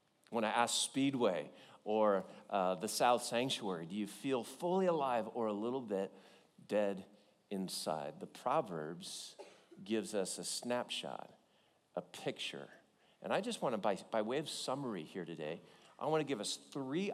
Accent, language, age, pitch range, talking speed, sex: American, English, 50-69, 125-175 Hz, 160 wpm, male